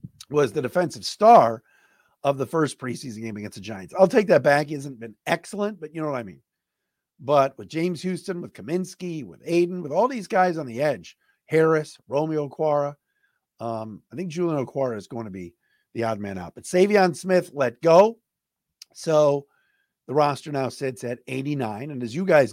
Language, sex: English, male